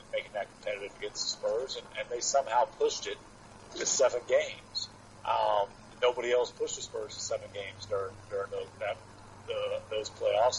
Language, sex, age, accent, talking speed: English, male, 40-59, American, 175 wpm